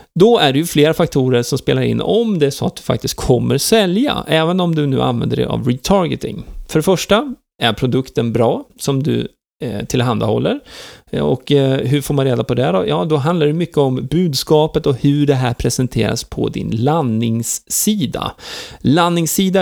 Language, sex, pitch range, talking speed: Swedish, male, 125-165 Hz, 185 wpm